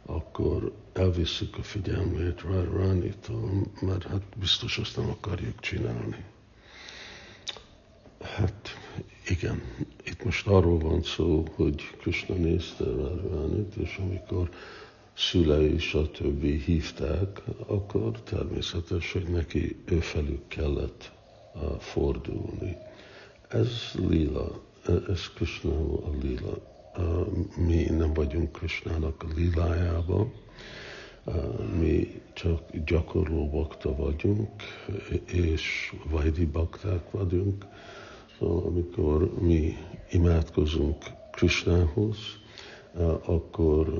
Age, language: 60-79, Hungarian